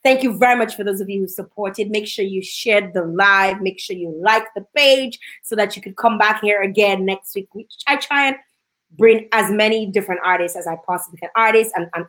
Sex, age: female, 20-39